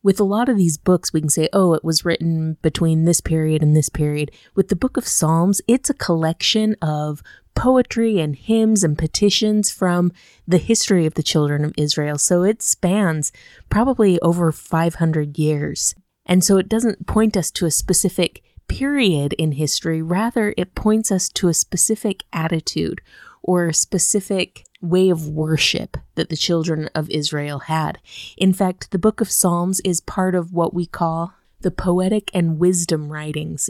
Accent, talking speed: American, 175 wpm